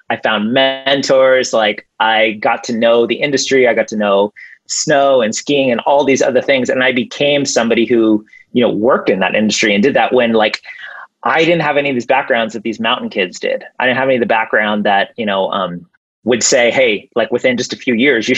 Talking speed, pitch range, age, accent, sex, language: 230 wpm, 110-145 Hz, 30-49, American, male, English